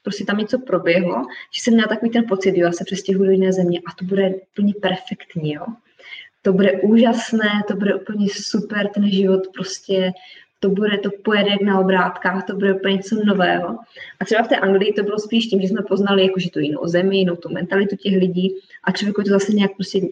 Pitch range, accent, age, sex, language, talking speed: 185-210 Hz, native, 20-39, female, Czech, 210 wpm